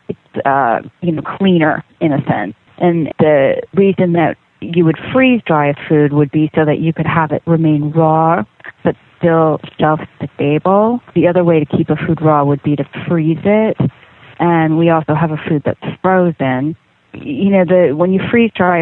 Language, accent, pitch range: English, American, 155-175 Hz